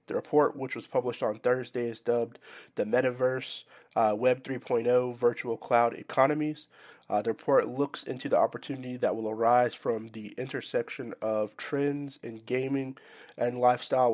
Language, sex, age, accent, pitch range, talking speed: English, male, 30-49, American, 115-130 Hz, 155 wpm